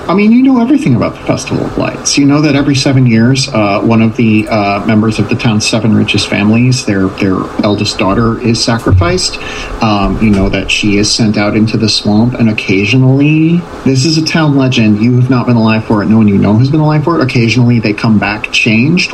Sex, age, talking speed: male, 40-59, 230 wpm